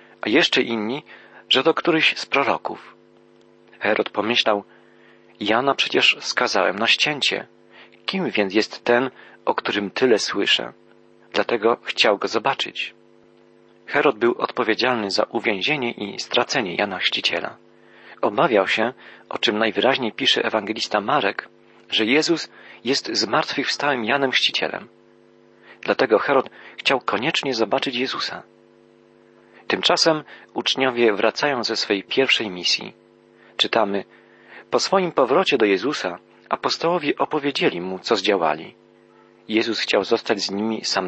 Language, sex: Polish, male